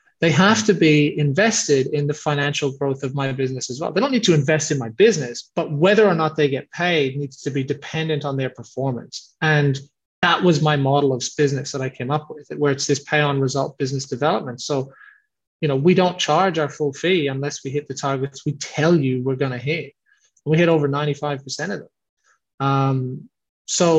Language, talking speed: English, 205 wpm